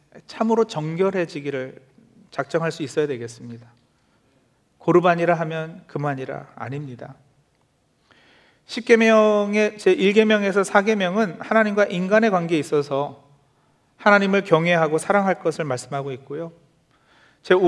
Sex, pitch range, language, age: male, 155-210 Hz, Korean, 40-59